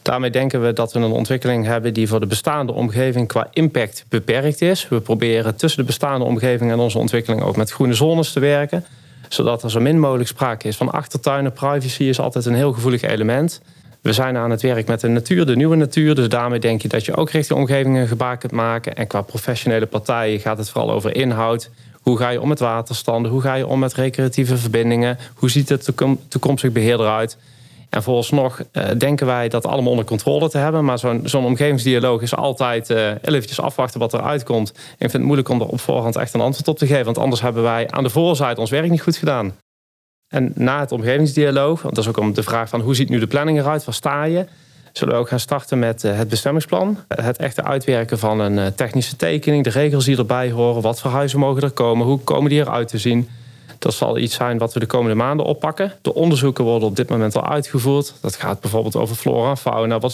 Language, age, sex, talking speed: Dutch, 30-49, male, 225 wpm